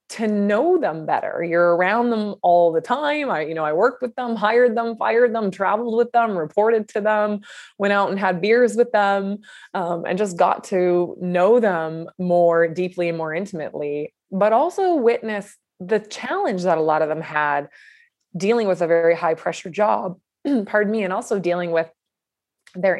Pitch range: 160-215 Hz